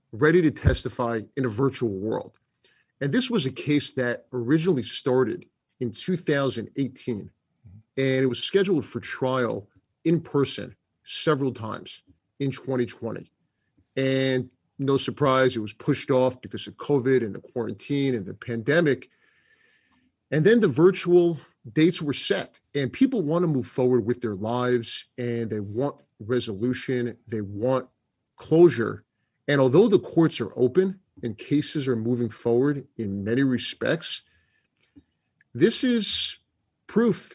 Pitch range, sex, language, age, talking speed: 120-145 Hz, male, English, 30-49, 135 wpm